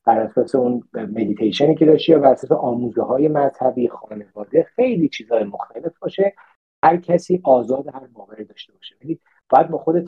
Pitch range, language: 110-160 Hz, Persian